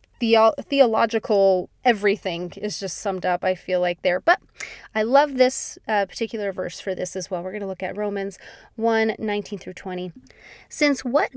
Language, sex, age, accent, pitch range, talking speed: English, female, 20-39, American, 200-275 Hz, 180 wpm